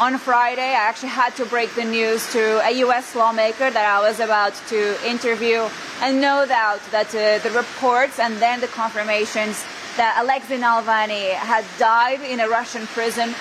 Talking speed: 175 wpm